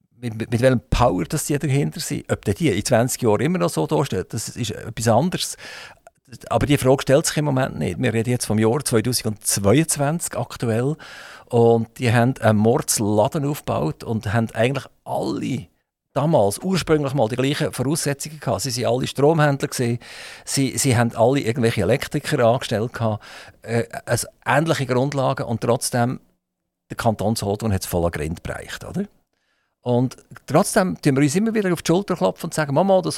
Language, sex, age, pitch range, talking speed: German, male, 50-69, 115-145 Hz, 170 wpm